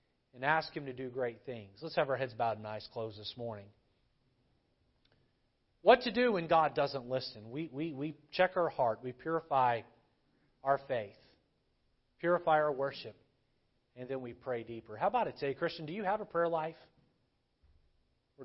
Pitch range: 120-145 Hz